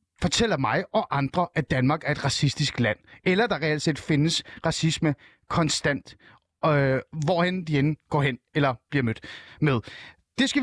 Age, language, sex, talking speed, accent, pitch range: 30-49, Danish, male, 160 wpm, native, 145-200 Hz